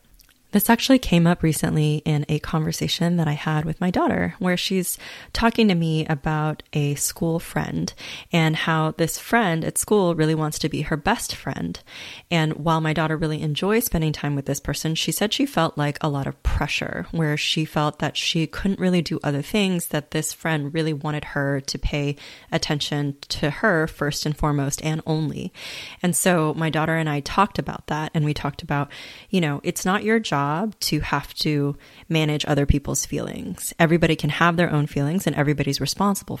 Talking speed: 195 wpm